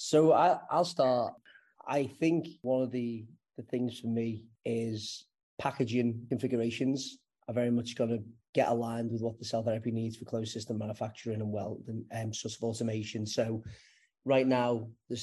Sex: male